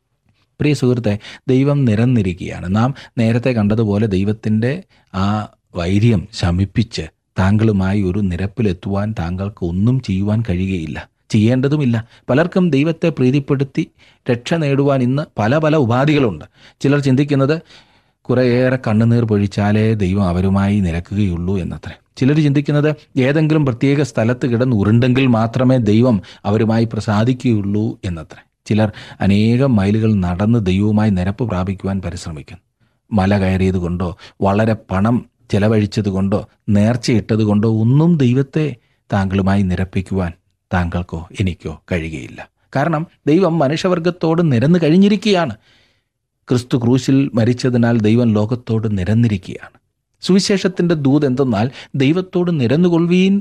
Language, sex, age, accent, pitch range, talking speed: Malayalam, male, 30-49, native, 100-140 Hz, 95 wpm